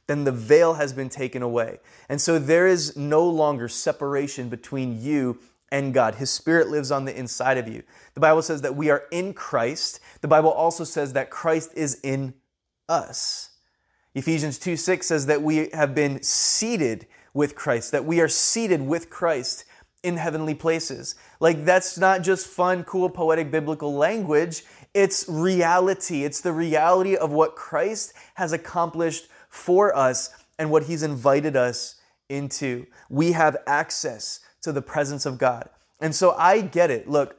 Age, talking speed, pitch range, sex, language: 20-39, 165 wpm, 135-165 Hz, male, English